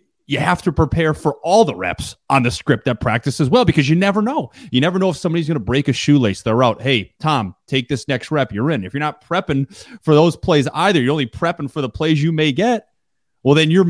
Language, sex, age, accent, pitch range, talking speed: English, male, 30-49, American, 120-160 Hz, 255 wpm